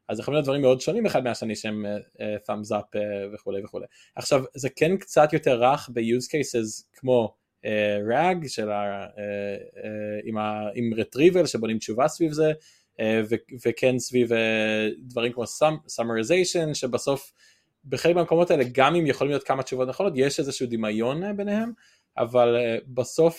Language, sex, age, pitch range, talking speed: Hebrew, male, 20-39, 115-150 Hz, 155 wpm